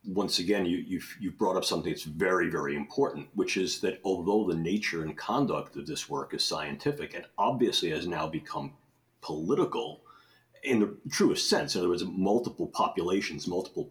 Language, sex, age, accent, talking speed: English, male, 40-59, American, 175 wpm